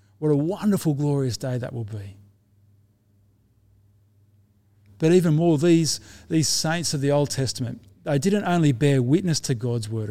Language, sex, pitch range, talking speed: English, male, 105-150 Hz, 155 wpm